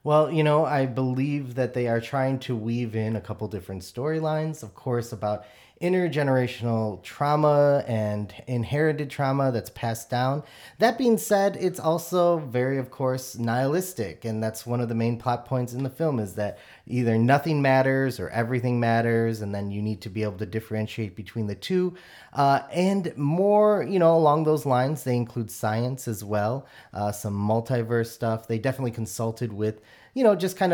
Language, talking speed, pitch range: English, 180 wpm, 110-145 Hz